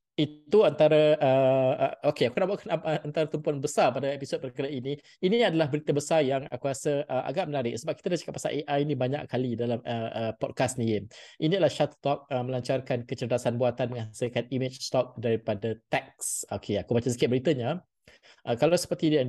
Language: Malay